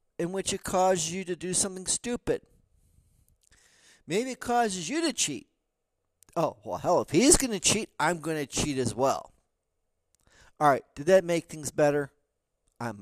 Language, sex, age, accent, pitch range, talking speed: English, male, 50-69, American, 115-180 Hz, 165 wpm